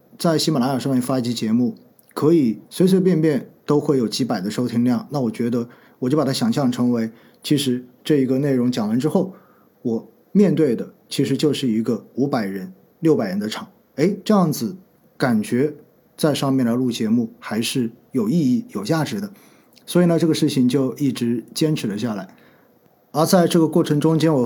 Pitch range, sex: 120-165 Hz, male